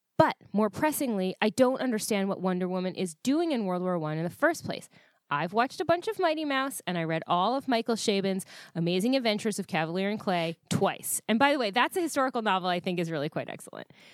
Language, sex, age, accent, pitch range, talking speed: English, female, 20-39, American, 180-240 Hz, 230 wpm